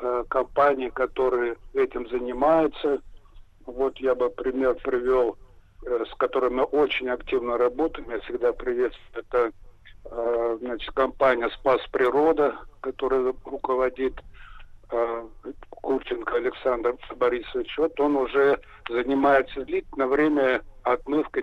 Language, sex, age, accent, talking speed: Russian, male, 50-69, native, 100 wpm